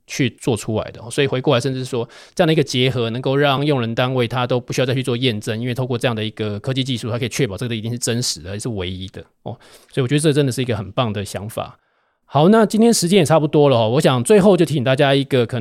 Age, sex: 20-39, male